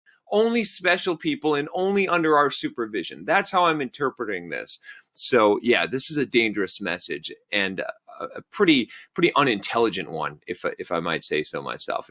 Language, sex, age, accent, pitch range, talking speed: English, male, 30-49, American, 120-175 Hz, 170 wpm